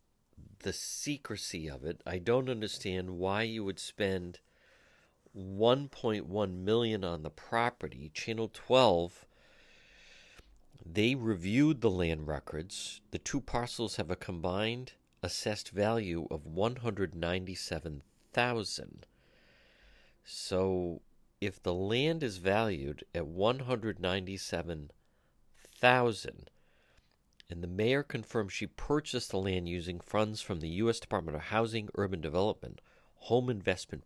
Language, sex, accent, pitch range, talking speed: English, male, American, 90-115 Hz, 105 wpm